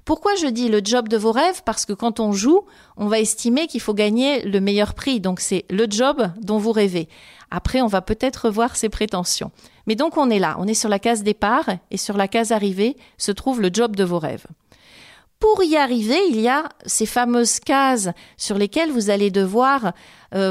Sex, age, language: female, 40-59, French